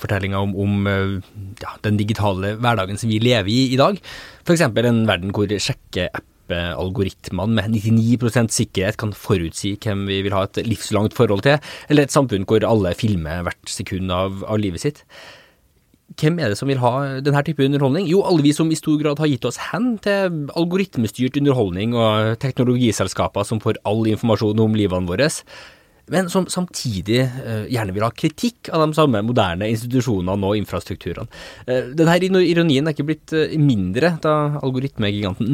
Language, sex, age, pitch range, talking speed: English, male, 20-39, 105-145 Hz, 165 wpm